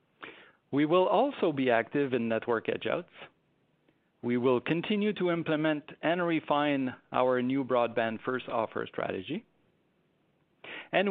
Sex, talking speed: male, 125 wpm